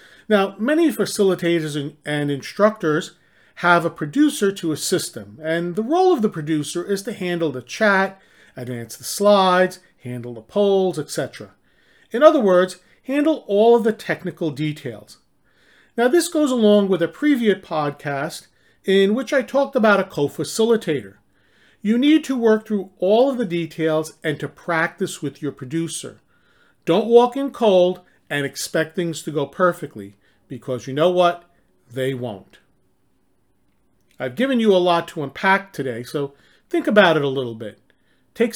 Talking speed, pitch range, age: 155 wpm, 150-210 Hz, 40-59